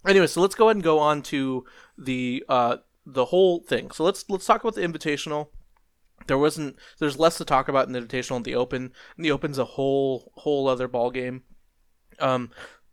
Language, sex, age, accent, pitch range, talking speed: English, male, 20-39, American, 125-155 Hz, 210 wpm